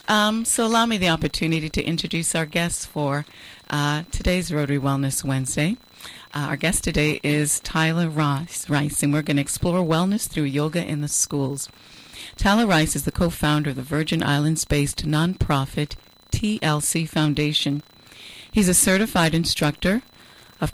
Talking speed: 155 wpm